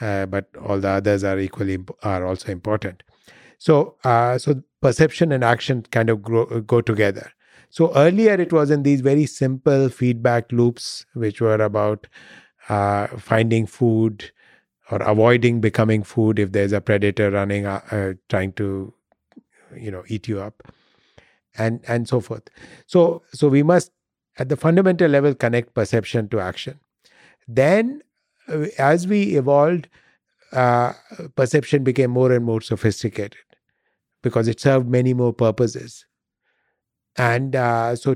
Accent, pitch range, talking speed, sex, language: Indian, 110-135 Hz, 145 wpm, male, English